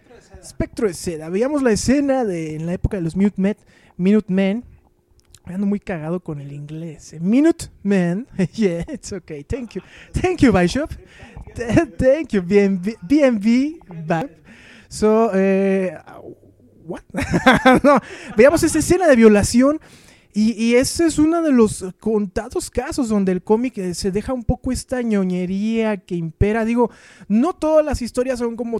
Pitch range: 185-240 Hz